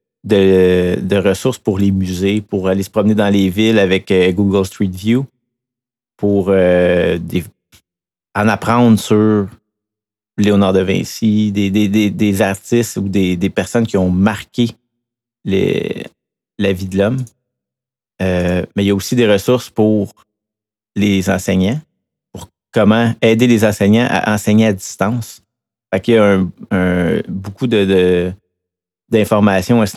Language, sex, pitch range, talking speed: French, male, 95-110 Hz, 150 wpm